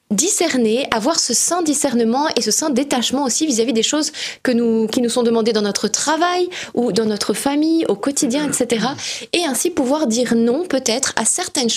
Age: 20-39